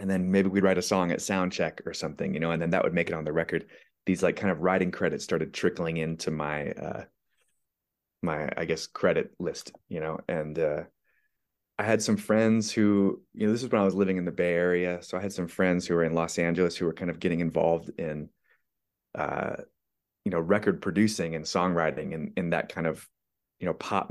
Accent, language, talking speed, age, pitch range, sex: American, English, 225 wpm, 30-49, 85-100 Hz, male